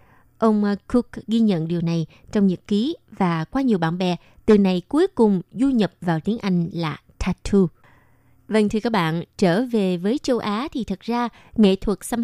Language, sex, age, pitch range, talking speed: Vietnamese, female, 20-39, 175-230 Hz, 195 wpm